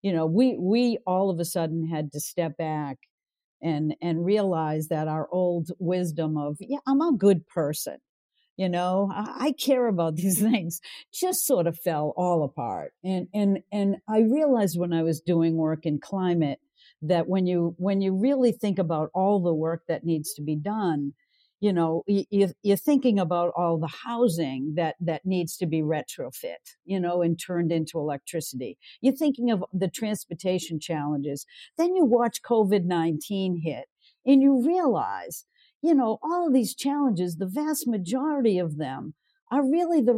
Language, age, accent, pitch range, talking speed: English, 50-69, American, 165-255 Hz, 170 wpm